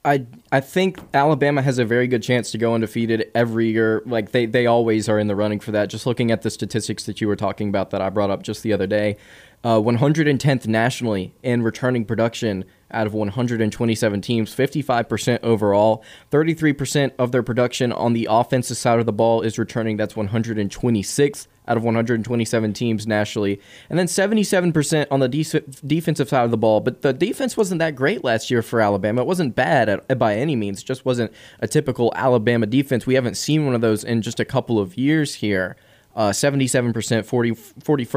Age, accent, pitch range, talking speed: 20-39, American, 110-130 Hz, 195 wpm